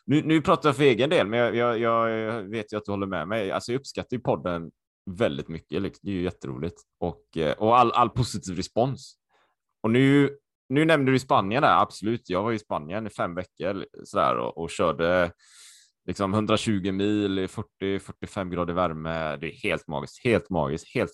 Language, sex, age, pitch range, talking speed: Swedish, male, 20-39, 95-135 Hz, 195 wpm